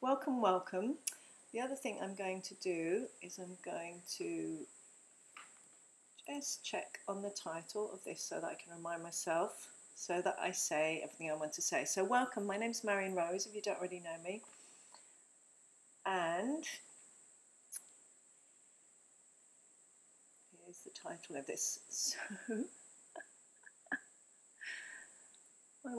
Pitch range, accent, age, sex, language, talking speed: 170-215 Hz, British, 40-59, female, English, 130 wpm